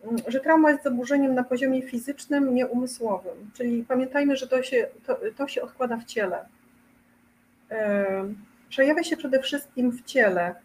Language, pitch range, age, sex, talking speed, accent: Polish, 225-265 Hz, 40-59, female, 130 wpm, native